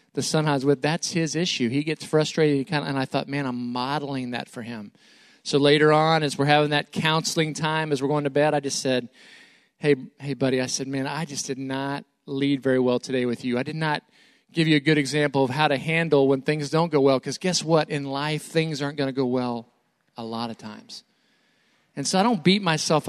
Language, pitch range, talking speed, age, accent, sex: English, 135-165 Hz, 240 wpm, 40-59, American, male